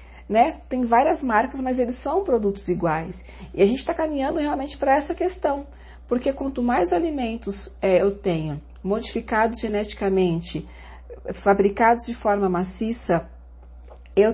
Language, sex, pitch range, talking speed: Portuguese, female, 200-255 Hz, 130 wpm